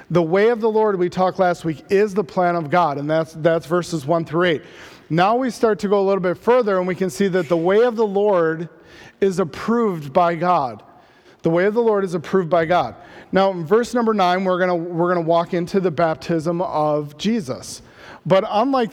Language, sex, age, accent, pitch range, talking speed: English, male, 40-59, American, 165-195 Hz, 225 wpm